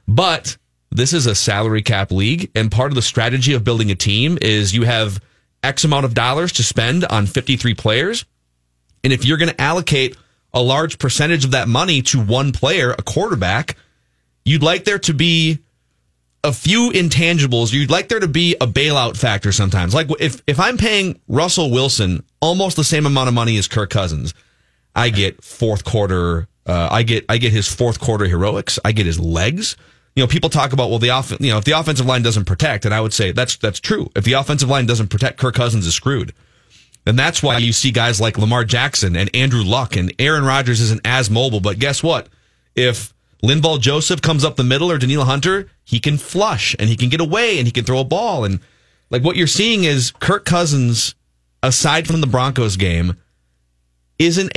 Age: 30-49